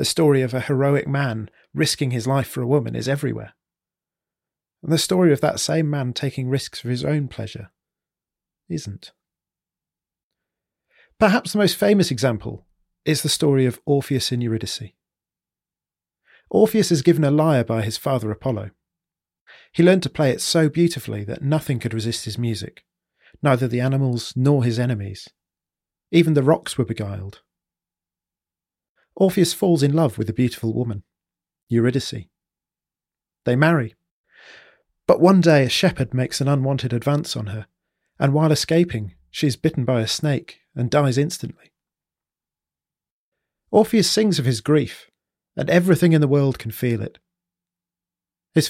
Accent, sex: British, male